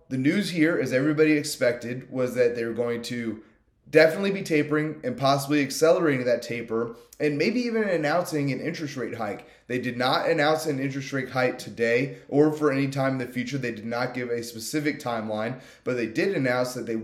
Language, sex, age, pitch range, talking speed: English, male, 30-49, 125-155 Hz, 195 wpm